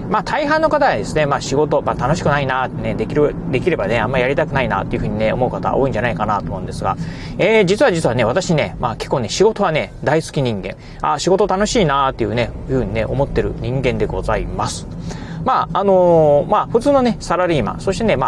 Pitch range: 125-180 Hz